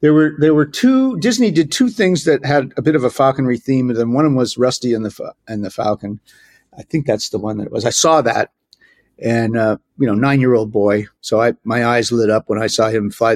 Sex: male